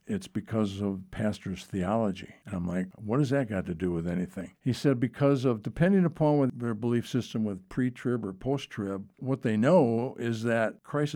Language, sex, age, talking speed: English, male, 60-79, 190 wpm